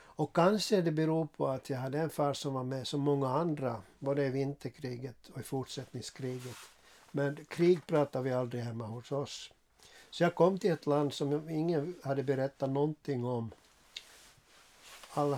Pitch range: 130-150 Hz